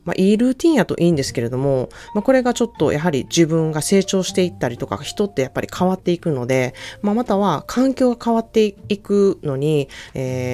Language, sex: Japanese, female